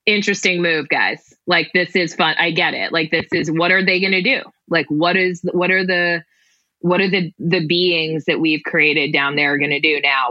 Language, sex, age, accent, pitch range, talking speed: English, female, 20-39, American, 155-190 Hz, 225 wpm